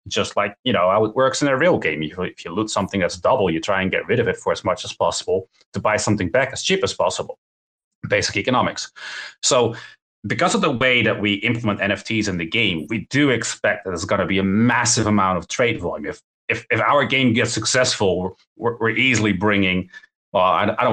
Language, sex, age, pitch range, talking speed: English, male, 30-49, 95-120 Hz, 225 wpm